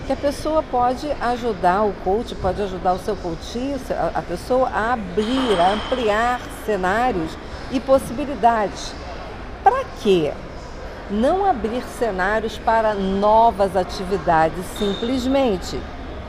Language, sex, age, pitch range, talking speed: Portuguese, female, 50-69, 185-250 Hz, 110 wpm